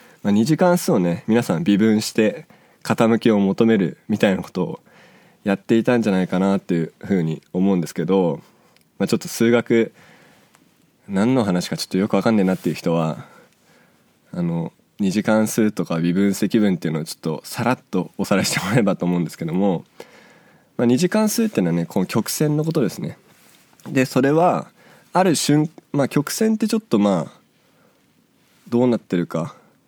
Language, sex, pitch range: Japanese, male, 95-140 Hz